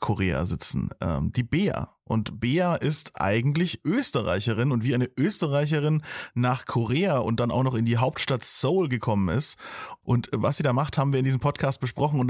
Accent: German